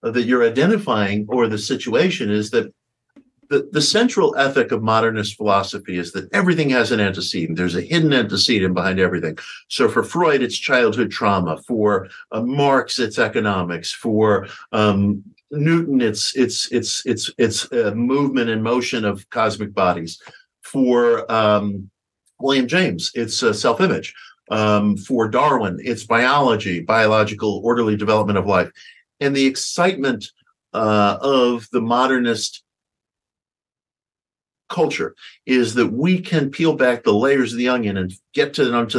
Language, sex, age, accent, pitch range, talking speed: English, male, 50-69, American, 105-135 Hz, 145 wpm